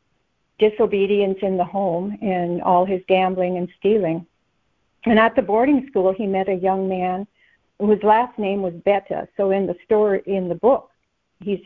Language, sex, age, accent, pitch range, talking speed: English, female, 60-79, American, 190-215 Hz, 170 wpm